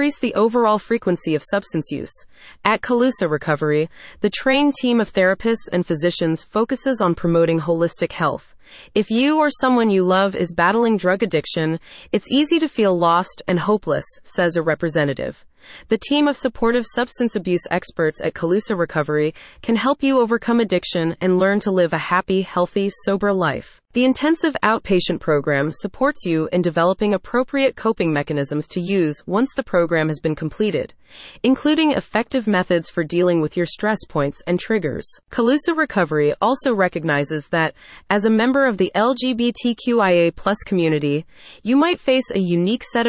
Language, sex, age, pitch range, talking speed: English, female, 20-39, 170-235 Hz, 160 wpm